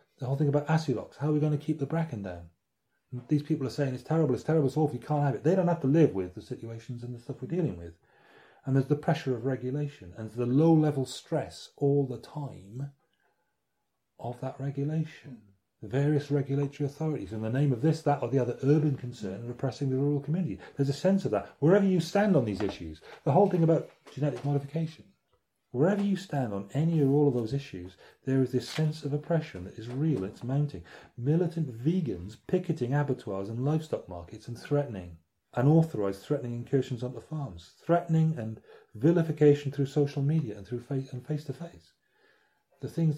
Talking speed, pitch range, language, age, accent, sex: 200 wpm, 120-155 Hz, English, 30-49, British, male